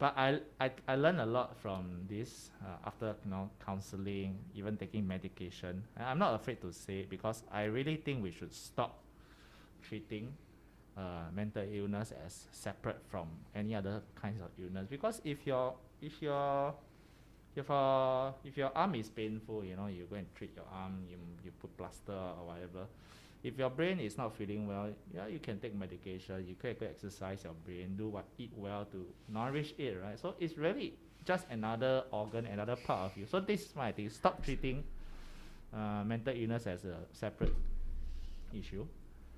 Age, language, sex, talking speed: 20-39, English, male, 180 wpm